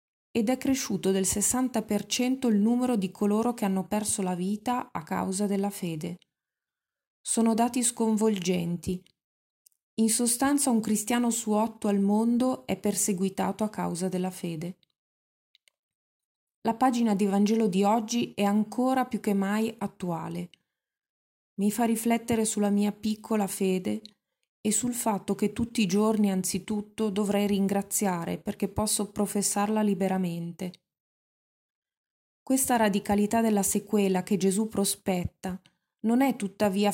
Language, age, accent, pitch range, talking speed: Italian, 20-39, native, 190-225 Hz, 125 wpm